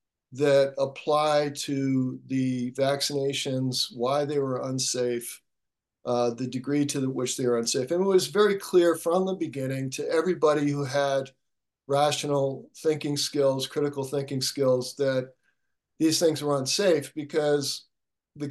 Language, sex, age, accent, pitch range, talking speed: English, male, 50-69, American, 130-155 Hz, 140 wpm